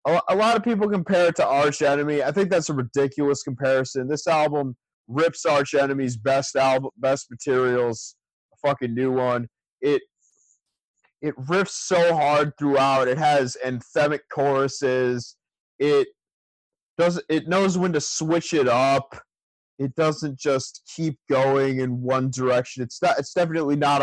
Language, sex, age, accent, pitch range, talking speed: English, male, 30-49, American, 125-150 Hz, 150 wpm